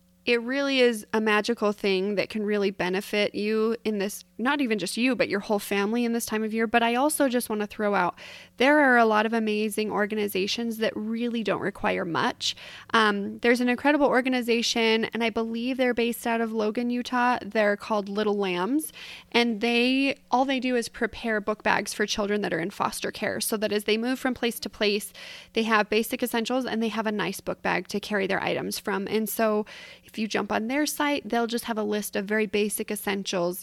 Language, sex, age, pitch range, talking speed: English, female, 20-39, 210-255 Hz, 220 wpm